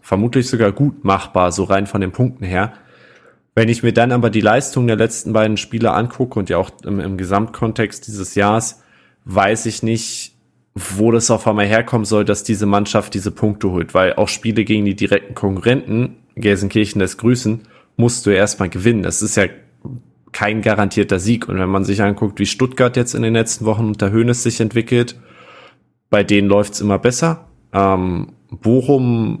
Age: 20-39